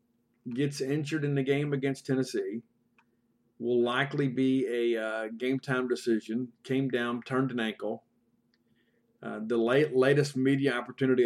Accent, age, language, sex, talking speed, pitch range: American, 50-69, English, male, 135 wpm, 115-130 Hz